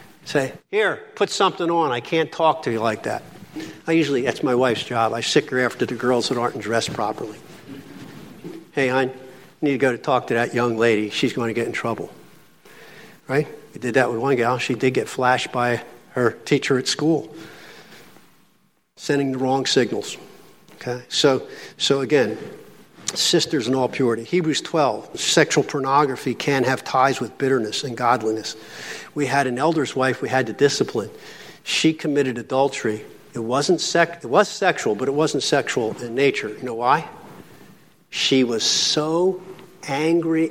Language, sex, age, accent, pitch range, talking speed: English, male, 50-69, American, 120-160 Hz, 170 wpm